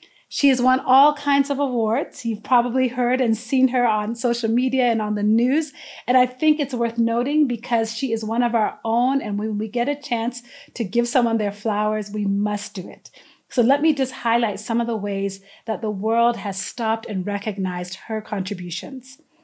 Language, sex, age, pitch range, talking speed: English, female, 30-49, 215-260 Hz, 205 wpm